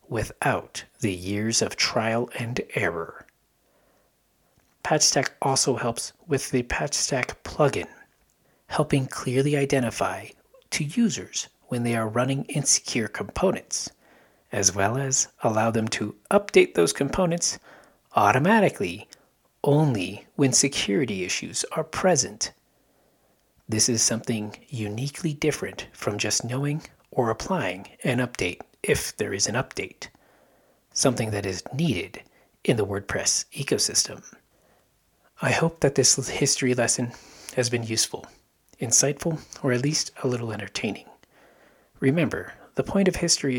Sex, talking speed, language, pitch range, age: male, 120 wpm, English, 115-145 Hz, 40-59